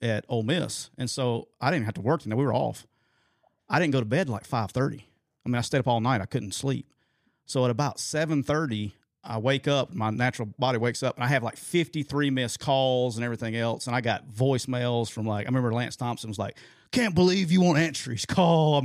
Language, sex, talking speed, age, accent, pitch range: English, male, 240 wpm, 40-59, American, 115-140 Hz